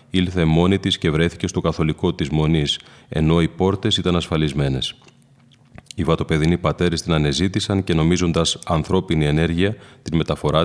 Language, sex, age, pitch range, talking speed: Greek, male, 30-49, 80-95 Hz, 140 wpm